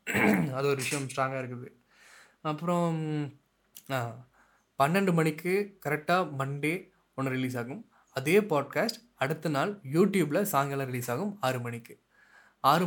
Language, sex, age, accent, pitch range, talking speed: Tamil, male, 20-39, native, 125-160 Hz, 110 wpm